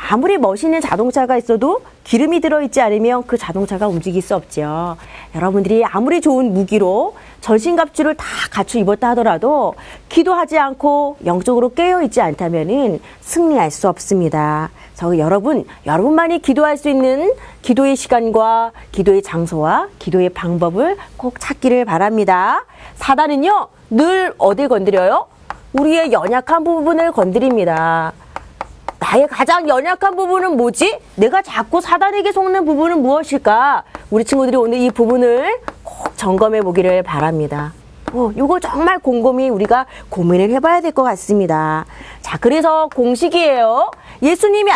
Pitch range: 195-320 Hz